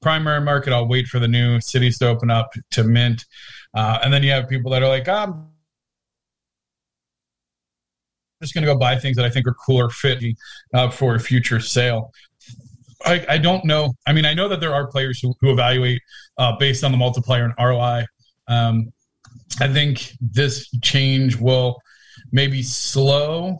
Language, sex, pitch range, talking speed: English, male, 120-145 Hz, 180 wpm